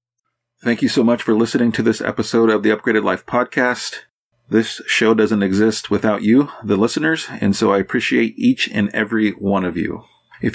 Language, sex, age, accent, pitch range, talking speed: English, male, 30-49, American, 100-115 Hz, 190 wpm